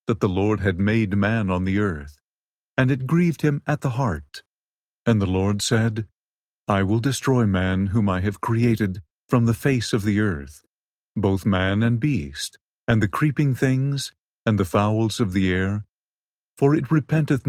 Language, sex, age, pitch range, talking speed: English, male, 50-69, 95-130 Hz, 170 wpm